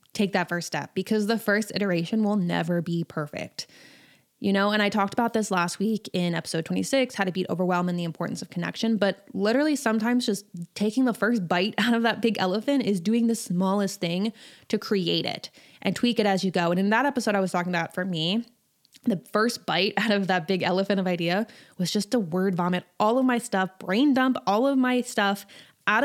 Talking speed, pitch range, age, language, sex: 220 wpm, 185-230 Hz, 20-39, English, female